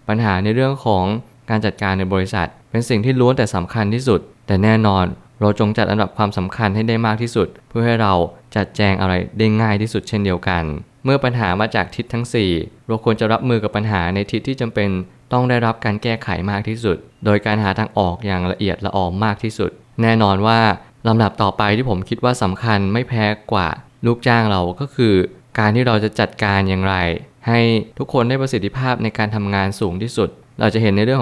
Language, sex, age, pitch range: Thai, male, 20-39, 100-115 Hz